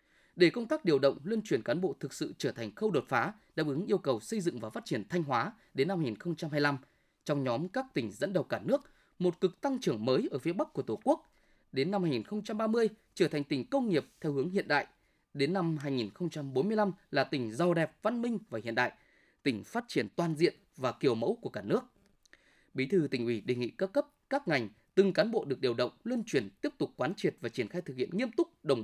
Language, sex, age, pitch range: Vietnamese, male, 20-39, 145-225 Hz